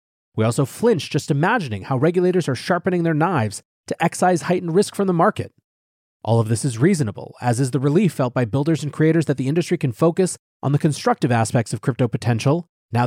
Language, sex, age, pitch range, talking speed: English, male, 30-49, 120-180 Hz, 205 wpm